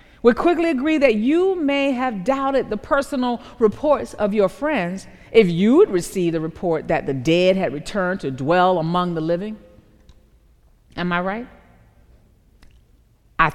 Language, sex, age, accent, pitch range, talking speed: English, female, 40-59, American, 200-290 Hz, 150 wpm